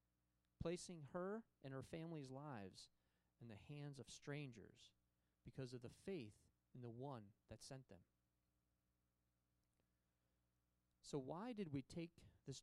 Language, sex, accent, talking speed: English, male, American, 130 wpm